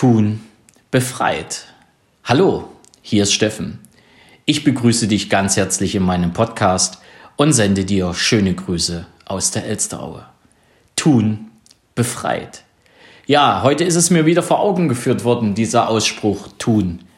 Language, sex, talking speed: German, male, 130 wpm